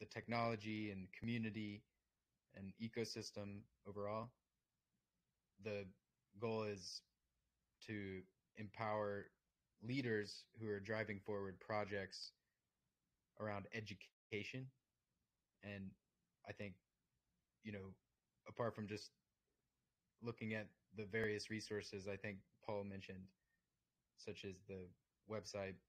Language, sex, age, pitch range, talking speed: Russian, male, 20-39, 95-110 Hz, 95 wpm